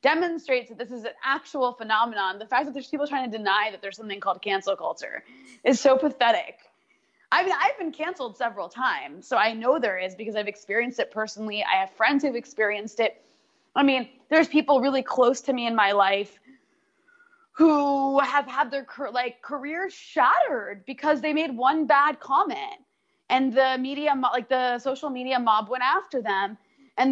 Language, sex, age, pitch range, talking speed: English, female, 20-39, 230-320 Hz, 185 wpm